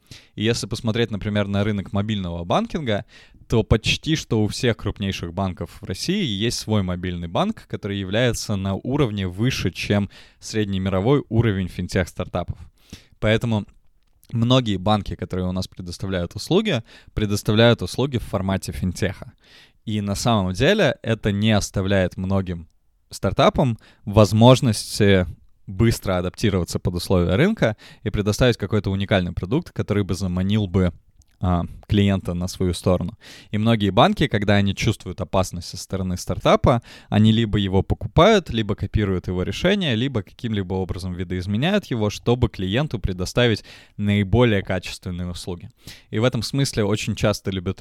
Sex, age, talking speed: male, 20-39, 135 wpm